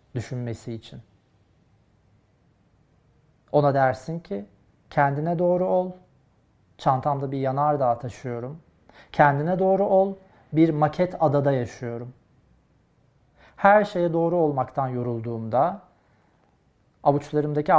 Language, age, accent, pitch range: Turkish, 40-59, native, 110-155 Hz